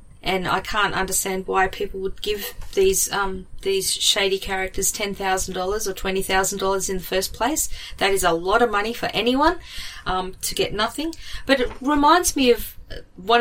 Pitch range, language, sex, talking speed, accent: 185-210 Hz, English, female, 170 wpm, Australian